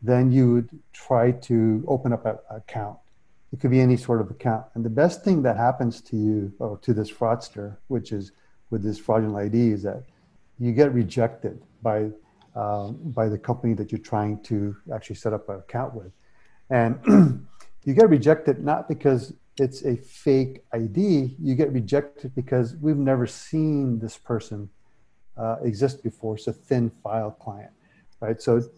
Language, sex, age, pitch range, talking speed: English, male, 50-69, 110-125 Hz, 175 wpm